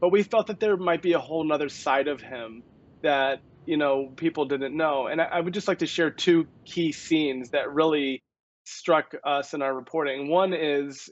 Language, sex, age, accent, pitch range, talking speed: English, male, 30-49, American, 135-160 Hz, 205 wpm